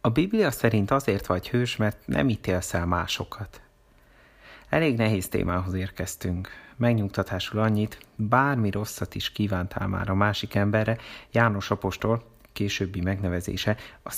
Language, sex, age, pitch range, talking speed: Hungarian, male, 30-49, 95-115 Hz, 125 wpm